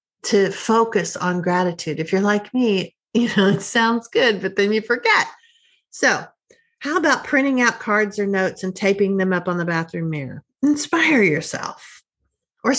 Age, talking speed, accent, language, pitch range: 50-69, 170 wpm, American, English, 190-245 Hz